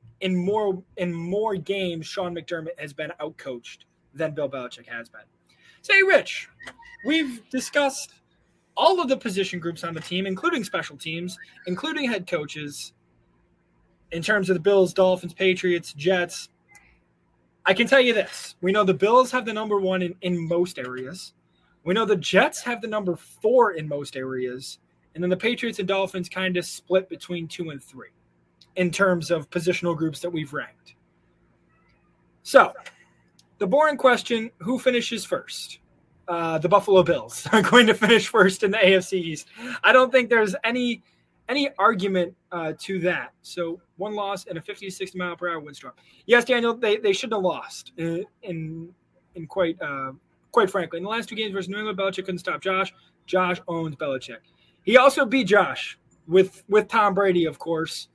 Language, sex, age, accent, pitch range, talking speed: English, male, 20-39, American, 165-215 Hz, 175 wpm